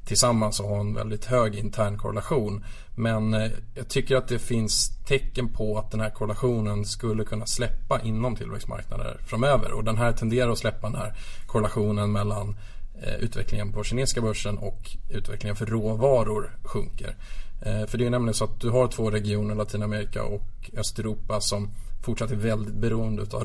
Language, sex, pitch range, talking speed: Swedish, male, 105-120 Hz, 170 wpm